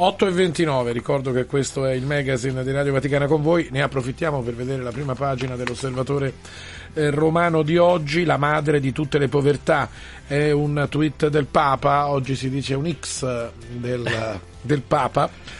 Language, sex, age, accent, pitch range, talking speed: Italian, male, 40-59, native, 125-150 Hz, 170 wpm